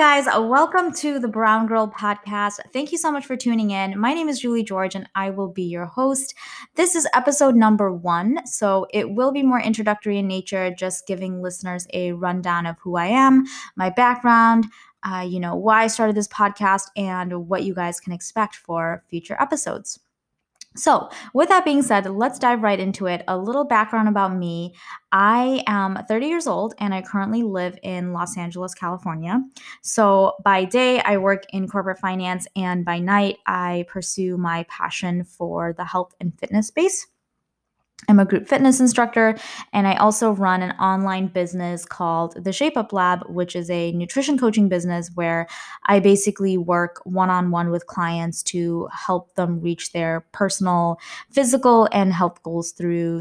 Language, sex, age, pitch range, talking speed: English, female, 20-39, 180-230 Hz, 175 wpm